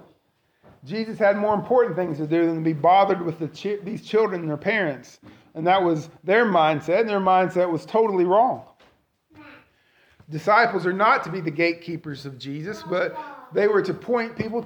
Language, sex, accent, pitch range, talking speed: English, male, American, 160-200 Hz, 175 wpm